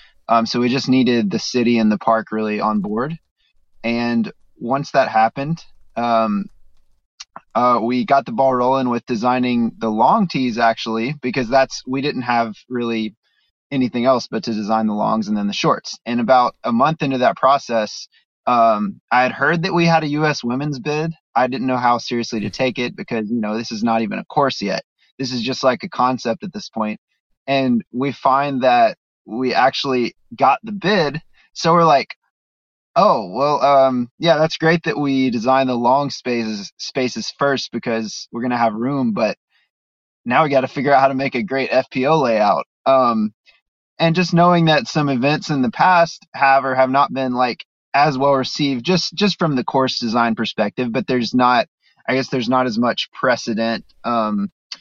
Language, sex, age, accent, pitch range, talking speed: English, male, 20-39, American, 115-140 Hz, 190 wpm